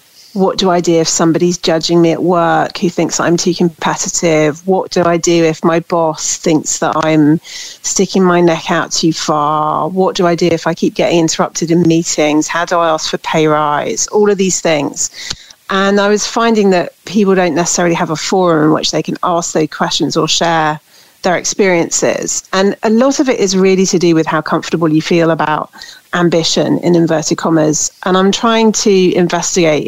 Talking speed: 200 wpm